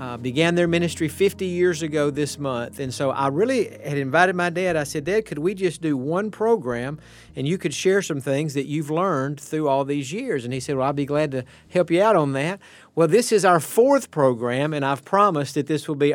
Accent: American